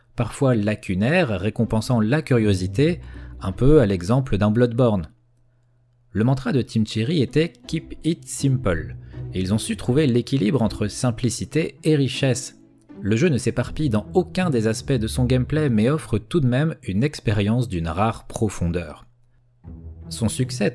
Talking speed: 160 wpm